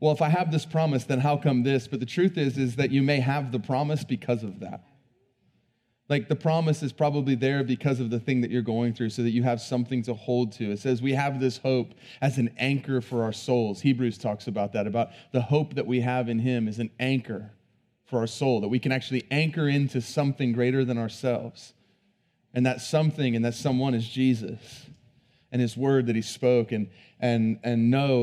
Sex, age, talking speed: male, 30-49, 220 wpm